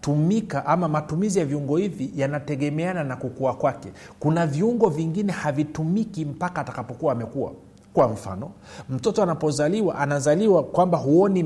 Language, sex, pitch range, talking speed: Swahili, male, 125-175 Hz, 125 wpm